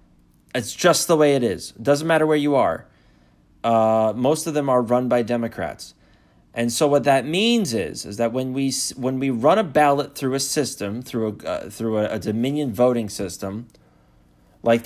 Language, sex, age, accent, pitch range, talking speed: English, male, 30-49, American, 105-145 Hz, 200 wpm